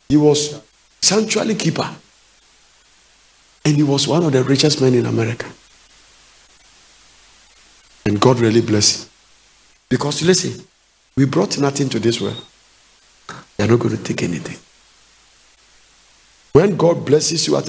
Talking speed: 130 wpm